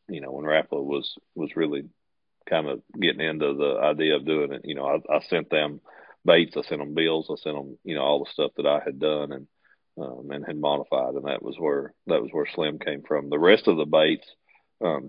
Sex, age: male, 40-59